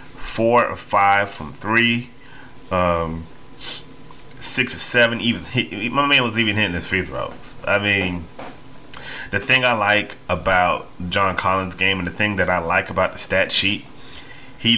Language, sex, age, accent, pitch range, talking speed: English, male, 30-49, American, 90-110 Hz, 160 wpm